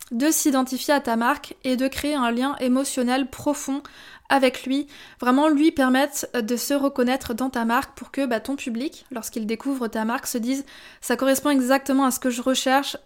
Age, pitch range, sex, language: 20-39, 245-285 Hz, female, French